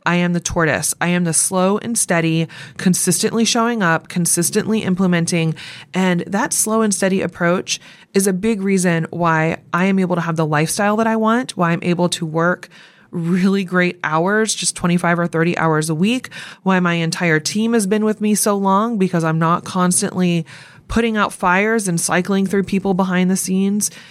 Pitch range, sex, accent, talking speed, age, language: 165-200 Hz, female, American, 185 wpm, 20-39, English